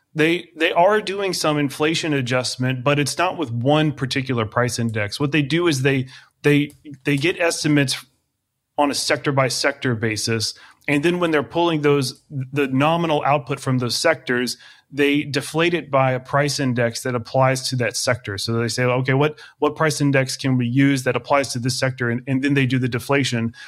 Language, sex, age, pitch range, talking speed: English, male, 30-49, 125-150 Hz, 195 wpm